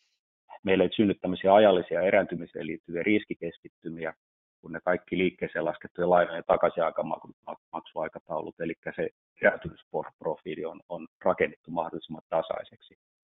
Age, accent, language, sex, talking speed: 30-49, native, Finnish, male, 105 wpm